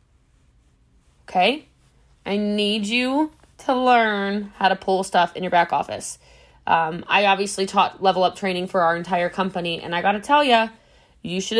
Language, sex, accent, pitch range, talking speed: English, female, American, 190-265 Hz, 170 wpm